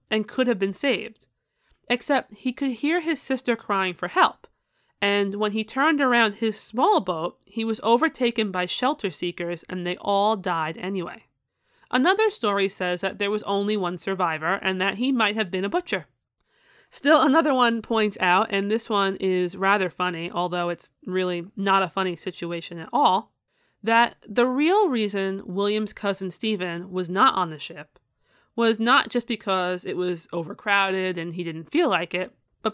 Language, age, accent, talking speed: English, 30-49, American, 175 wpm